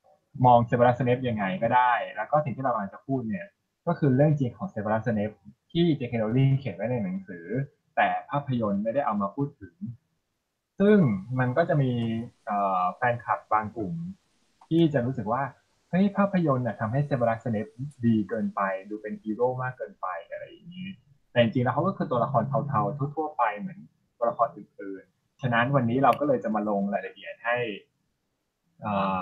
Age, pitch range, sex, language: 20-39, 105-145 Hz, male, English